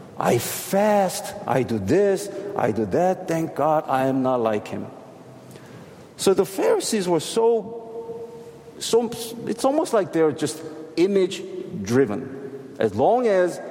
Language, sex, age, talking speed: English, male, 50-69, 135 wpm